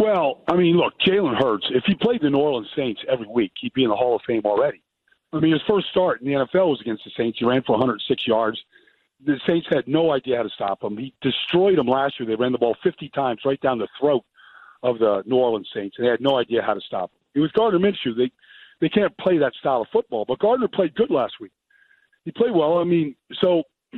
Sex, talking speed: male, 255 wpm